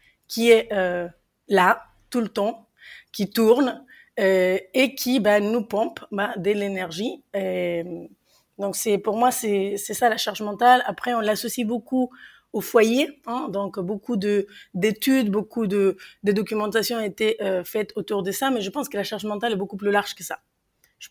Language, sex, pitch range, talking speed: French, female, 195-235 Hz, 185 wpm